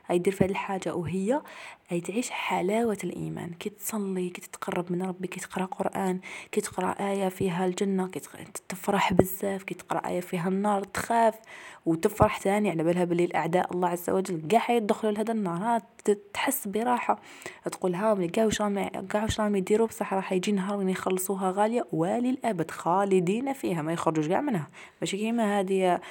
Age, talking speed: 20-39, 150 wpm